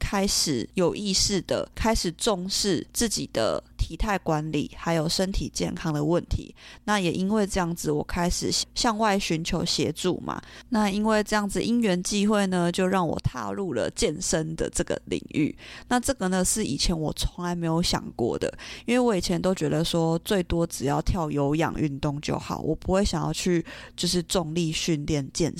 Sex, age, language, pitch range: female, 20-39, Chinese, 160-200 Hz